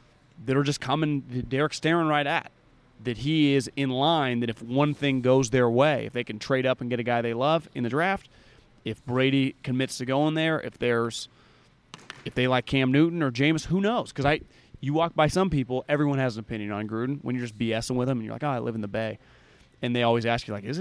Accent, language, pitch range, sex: American, English, 120-150 Hz, male